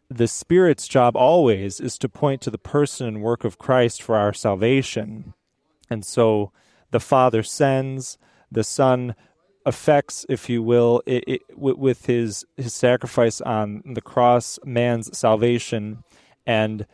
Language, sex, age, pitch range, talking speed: English, male, 30-49, 110-130 Hz, 140 wpm